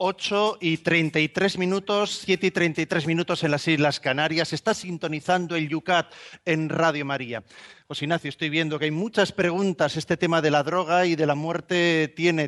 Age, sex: 40-59, male